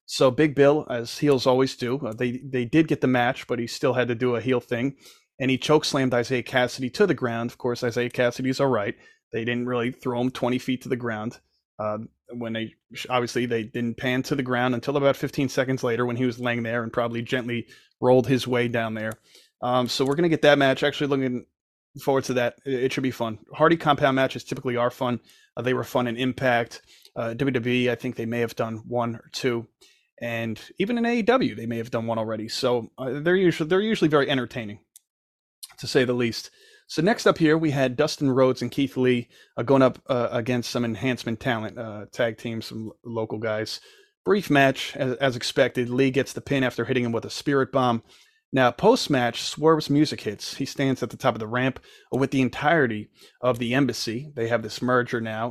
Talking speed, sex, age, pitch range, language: 220 wpm, male, 20-39, 120-135 Hz, English